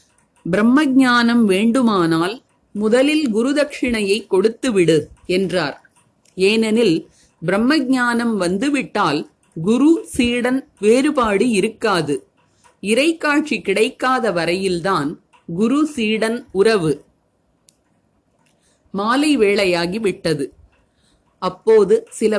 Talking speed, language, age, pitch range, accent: 65 wpm, Tamil, 30-49, 185-250 Hz, native